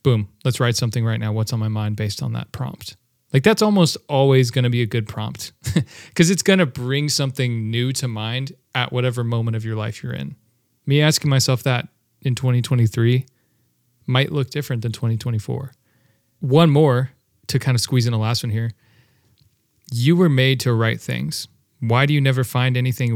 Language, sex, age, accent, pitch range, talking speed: English, male, 30-49, American, 115-135 Hz, 195 wpm